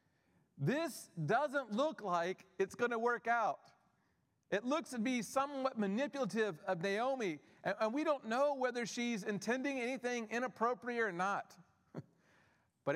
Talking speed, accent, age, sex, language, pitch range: 135 wpm, American, 40-59, male, English, 150-225 Hz